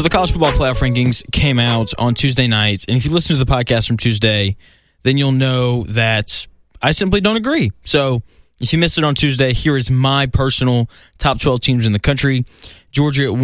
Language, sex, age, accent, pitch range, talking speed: English, male, 20-39, American, 110-135 Hz, 210 wpm